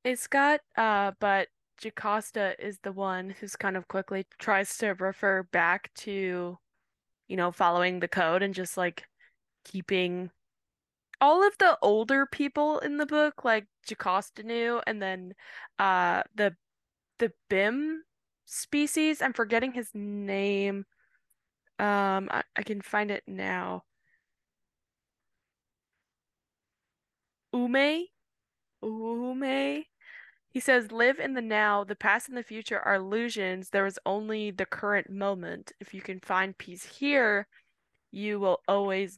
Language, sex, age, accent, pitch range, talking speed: English, female, 10-29, American, 190-245 Hz, 130 wpm